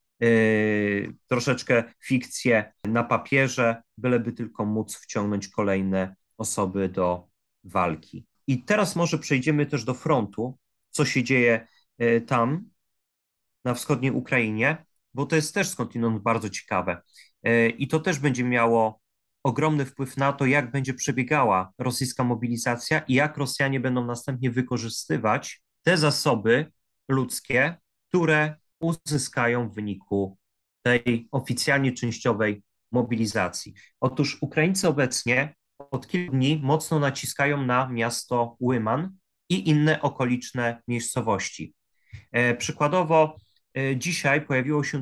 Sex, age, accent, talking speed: male, 30-49, native, 110 wpm